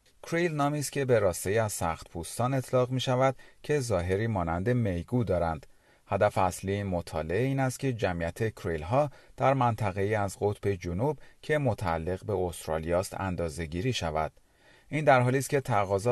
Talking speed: 165 wpm